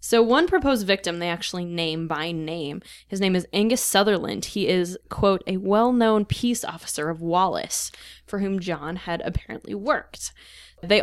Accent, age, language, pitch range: American, 10-29, English, 165-205 Hz